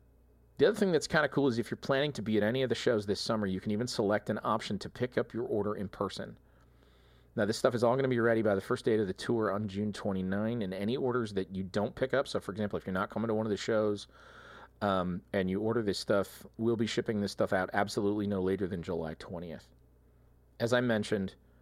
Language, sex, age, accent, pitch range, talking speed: English, male, 40-59, American, 85-115 Hz, 260 wpm